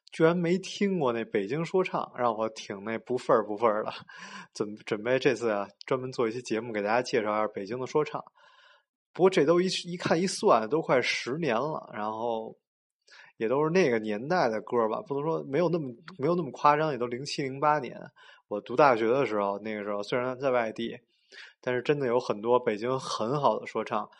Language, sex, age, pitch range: Chinese, male, 20-39, 110-150 Hz